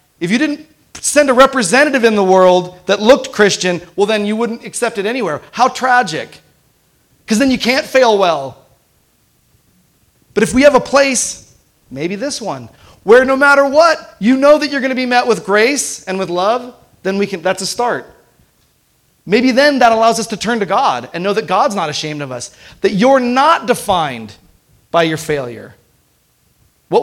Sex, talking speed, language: male, 185 wpm, English